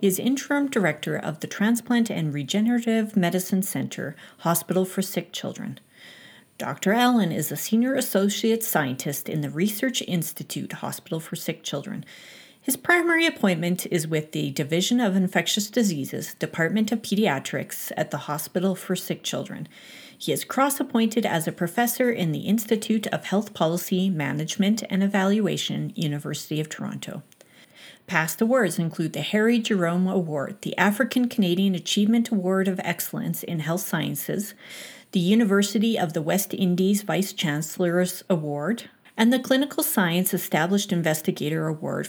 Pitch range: 165-225 Hz